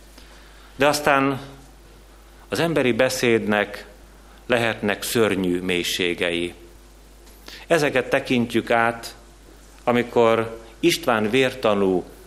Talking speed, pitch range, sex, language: 70 wpm, 95-125 Hz, male, Hungarian